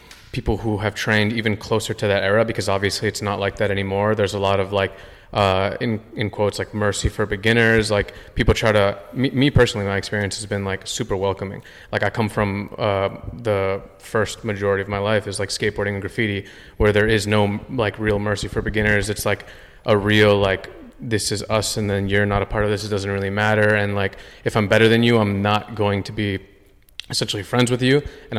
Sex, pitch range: male, 100-110 Hz